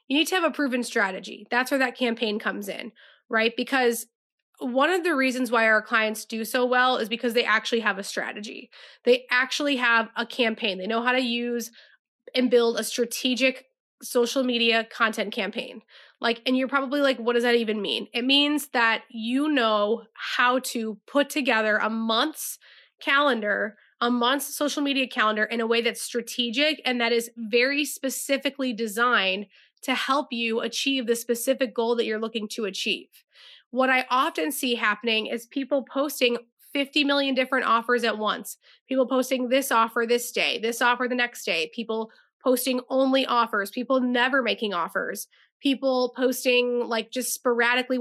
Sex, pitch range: female, 230-260 Hz